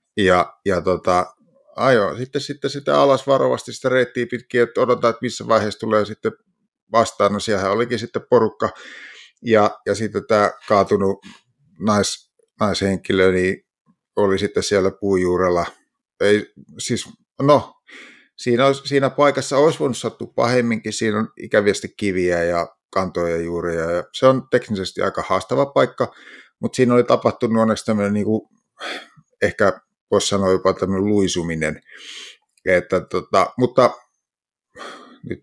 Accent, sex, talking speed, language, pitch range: native, male, 130 wpm, Finnish, 95-130 Hz